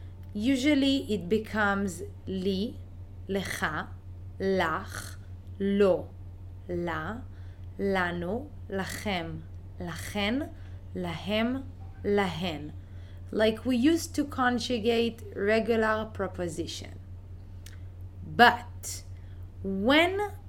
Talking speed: 65 wpm